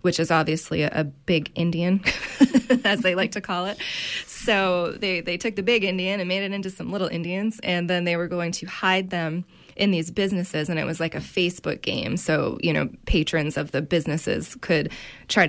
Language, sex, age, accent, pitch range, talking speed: English, female, 20-39, American, 165-195 Hz, 210 wpm